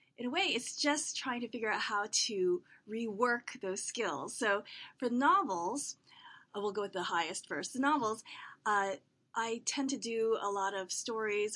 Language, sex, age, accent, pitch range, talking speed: English, female, 30-49, American, 185-245 Hz, 180 wpm